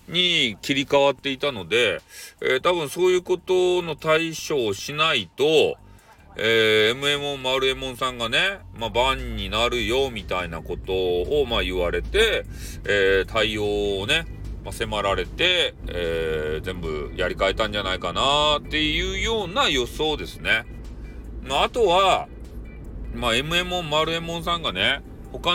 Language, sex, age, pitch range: Japanese, male, 40-59, 120-200 Hz